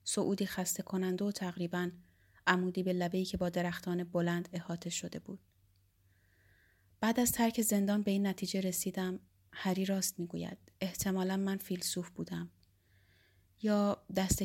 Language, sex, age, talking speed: Persian, female, 30-49, 135 wpm